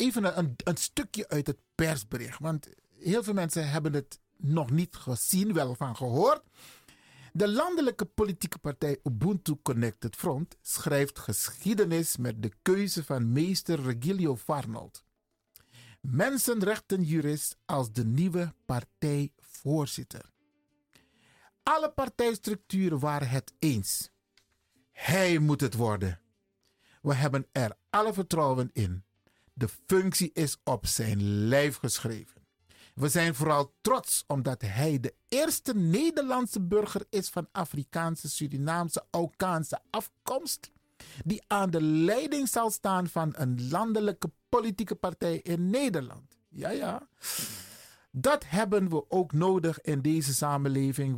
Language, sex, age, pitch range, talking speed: Dutch, male, 50-69, 130-190 Hz, 120 wpm